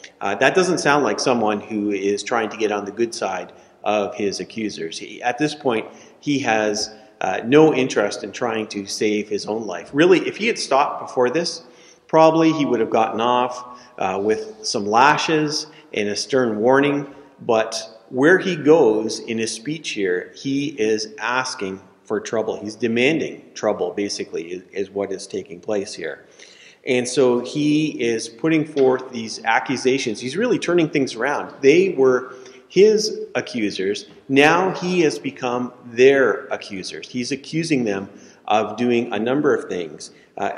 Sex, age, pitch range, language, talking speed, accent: male, 40-59, 110-150 Hz, English, 165 wpm, American